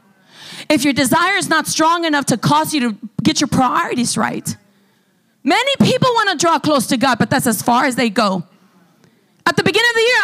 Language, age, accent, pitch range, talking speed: English, 30-49, American, 230-375 Hz, 210 wpm